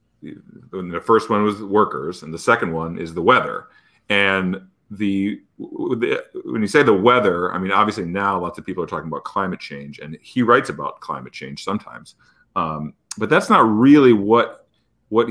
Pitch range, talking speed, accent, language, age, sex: 95-120 Hz, 180 wpm, American, English, 40-59, male